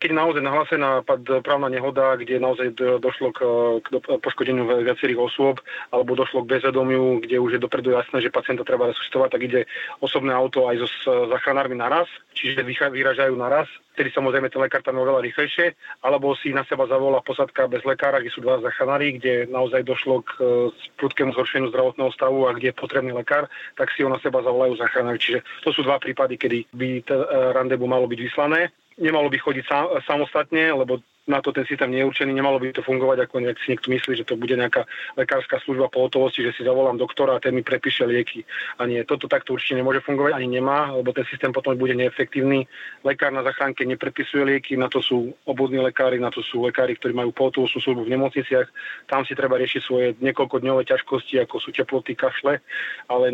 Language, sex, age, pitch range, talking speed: Slovak, male, 30-49, 130-140 Hz, 195 wpm